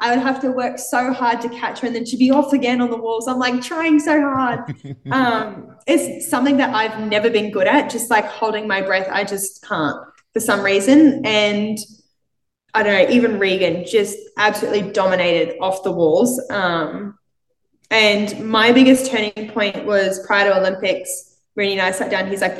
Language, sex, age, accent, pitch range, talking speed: English, female, 10-29, Australian, 180-230 Hz, 195 wpm